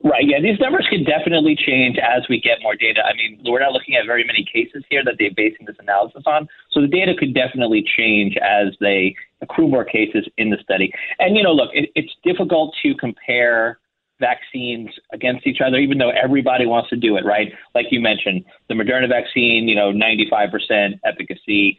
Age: 30-49